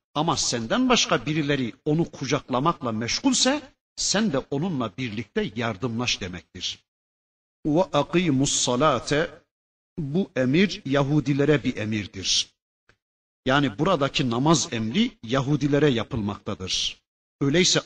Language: Turkish